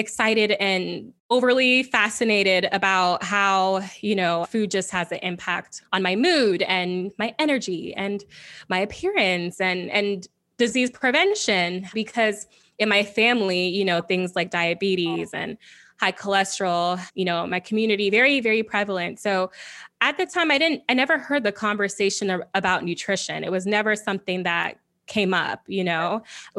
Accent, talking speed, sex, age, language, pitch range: American, 155 wpm, female, 20-39, English, 185-235 Hz